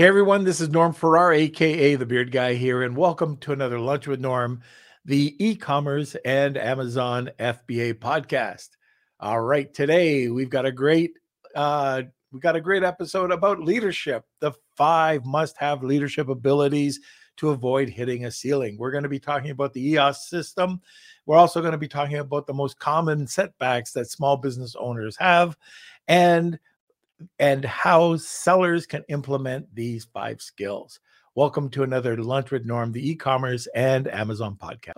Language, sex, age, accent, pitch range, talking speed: English, male, 50-69, American, 130-165 Hz, 160 wpm